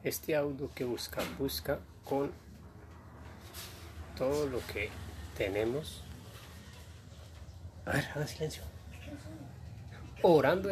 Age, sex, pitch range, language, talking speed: 30-49, male, 85-120 Hz, Spanish, 85 wpm